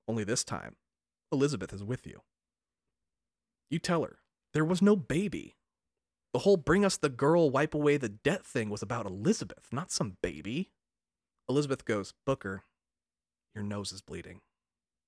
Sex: male